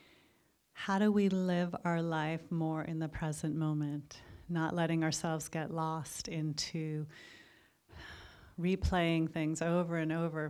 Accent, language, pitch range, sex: American, English, 155-185 Hz, female